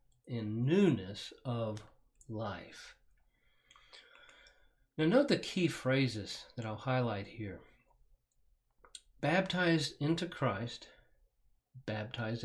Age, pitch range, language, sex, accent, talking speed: 50-69, 120-160 Hz, English, male, American, 80 wpm